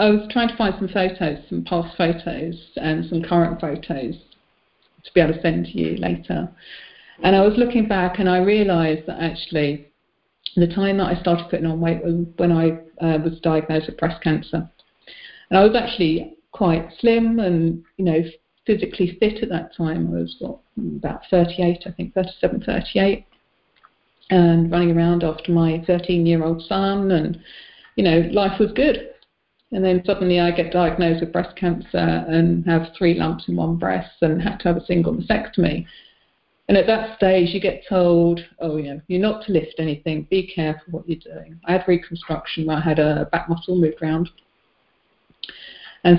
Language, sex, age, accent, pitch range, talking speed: English, female, 40-59, British, 165-190 Hz, 185 wpm